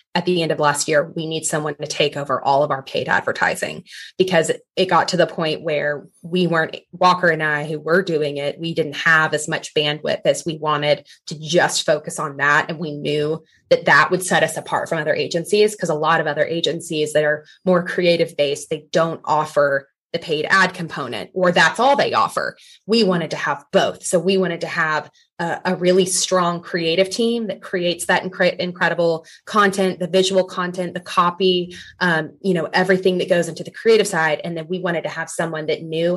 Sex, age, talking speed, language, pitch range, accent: female, 20-39, 205 wpm, English, 155-185 Hz, American